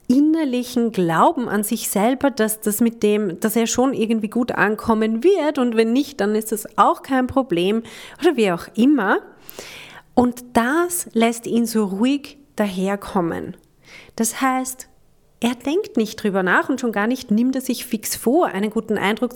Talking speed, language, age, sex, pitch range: 170 wpm, German, 30-49, female, 205-255 Hz